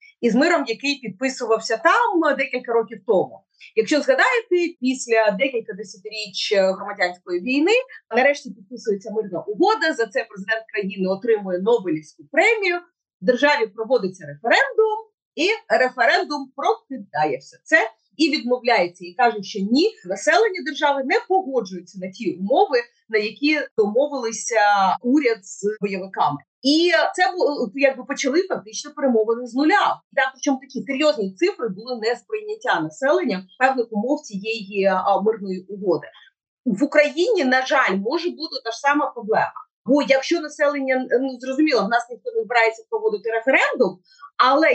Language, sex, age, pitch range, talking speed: Ukrainian, female, 30-49, 215-310 Hz, 135 wpm